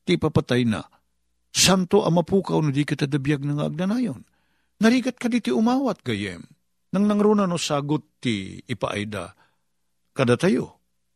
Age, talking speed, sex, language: 50-69, 130 wpm, male, Filipino